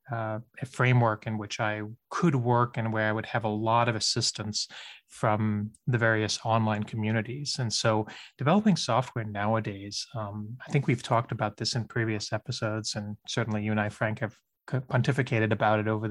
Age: 20-39